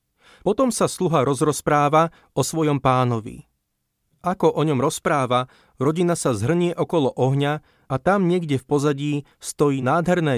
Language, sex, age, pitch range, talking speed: Slovak, male, 40-59, 130-160 Hz, 135 wpm